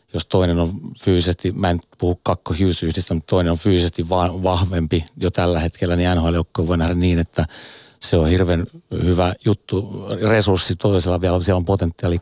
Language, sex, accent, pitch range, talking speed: Finnish, male, native, 85-100 Hz, 165 wpm